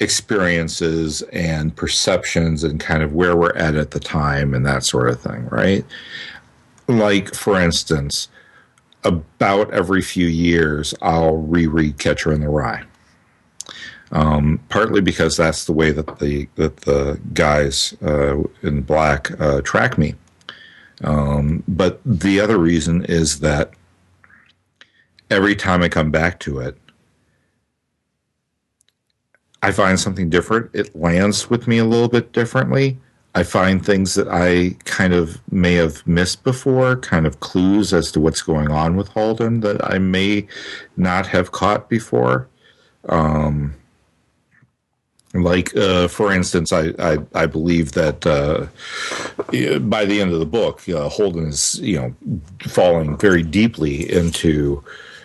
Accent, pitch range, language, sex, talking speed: American, 75-95 Hz, English, male, 140 wpm